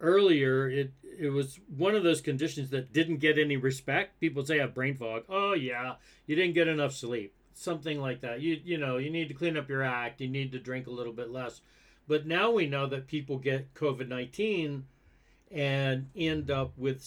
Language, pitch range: English, 125-155 Hz